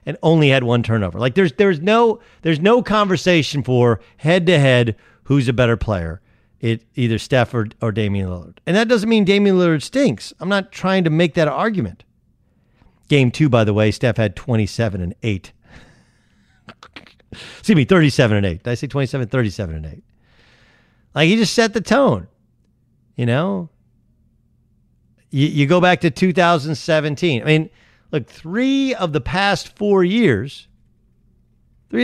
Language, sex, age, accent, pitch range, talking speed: English, male, 50-69, American, 115-180 Hz, 175 wpm